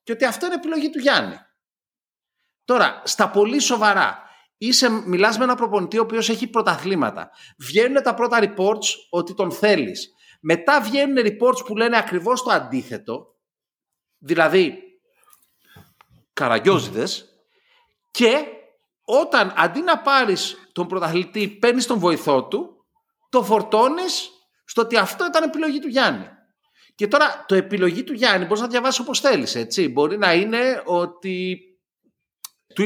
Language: Greek